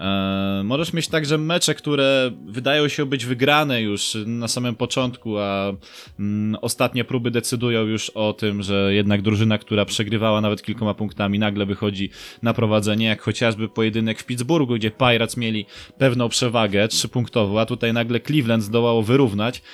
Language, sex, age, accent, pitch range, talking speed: Polish, male, 20-39, native, 105-140 Hz, 150 wpm